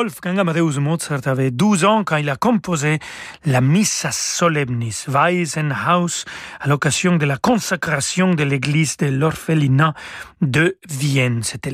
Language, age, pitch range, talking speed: French, 40-59, 140-180 Hz, 135 wpm